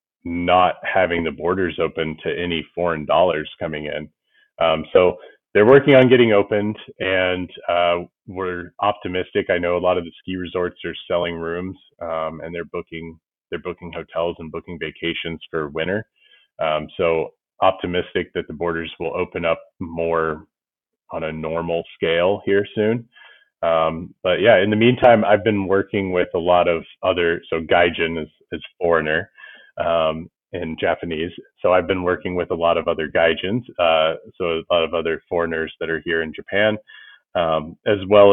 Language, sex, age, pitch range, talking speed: English, male, 30-49, 85-95 Hz, 170 wpm